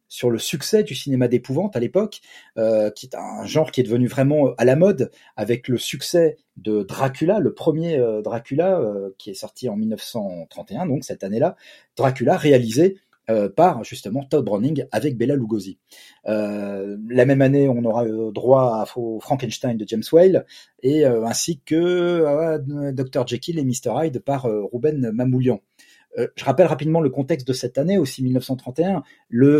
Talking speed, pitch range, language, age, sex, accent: 175 wpm, 120-160 Hz, French, 40-59, male, French